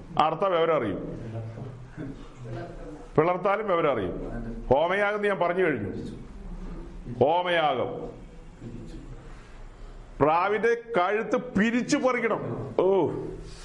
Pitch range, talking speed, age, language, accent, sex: 175-220 Hz, 65 wpm, 40-59, Malayalam, native, male